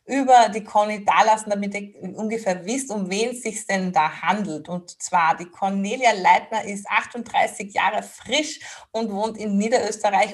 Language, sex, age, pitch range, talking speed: German, female, 30-49, 190-230 Hz, 165 wpm